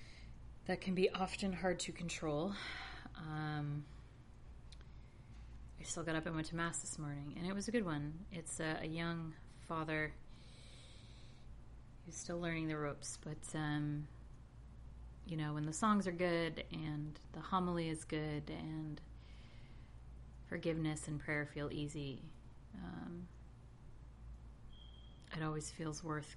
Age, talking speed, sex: 30-49, 135 wpm, female